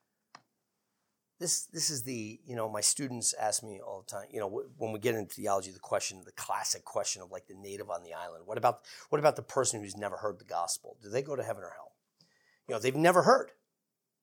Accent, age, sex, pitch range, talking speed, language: American, 40-59, male, 125-180 Hz, 230 wpm, English